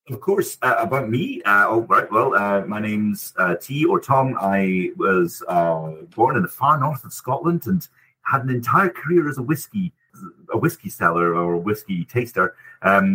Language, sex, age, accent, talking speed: English, male, 40-59, British, 185 wpm